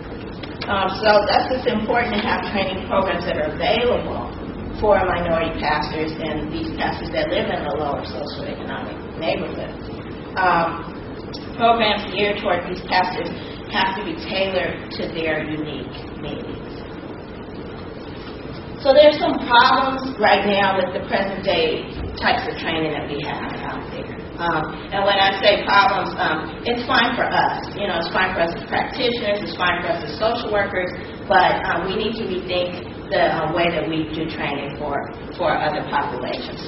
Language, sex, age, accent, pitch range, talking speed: English, female, 40-59, American, 170-225 Hz, 165 wpm